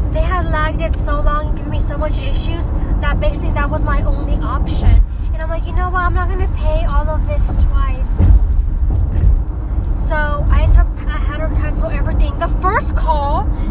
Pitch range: 75-90 Hz